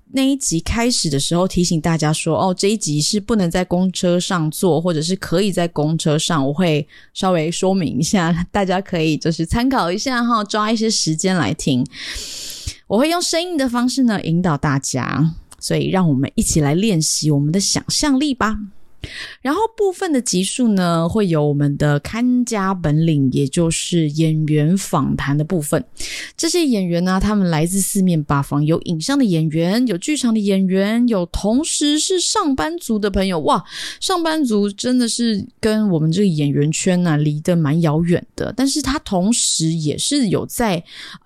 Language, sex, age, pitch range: Chinese, female, 20-39, 160-230 Hz